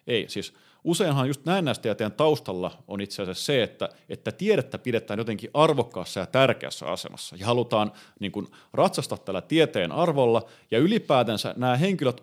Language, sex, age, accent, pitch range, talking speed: Finnish, male, 30-49, native, 105-150 Hz, 150 wpm